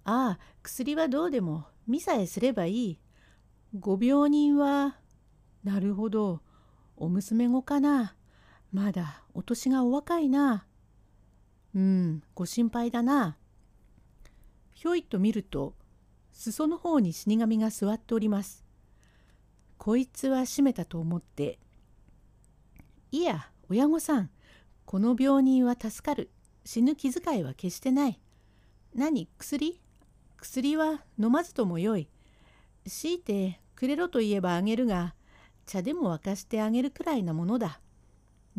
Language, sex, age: Japanese, female, 60-79